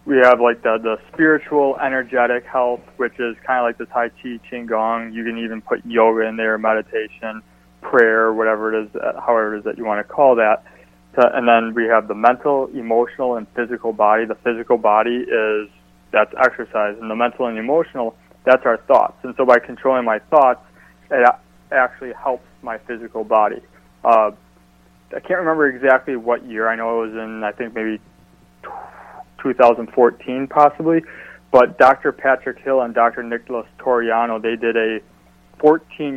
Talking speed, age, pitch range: 175 wpm, 20-39, 110-125 Hz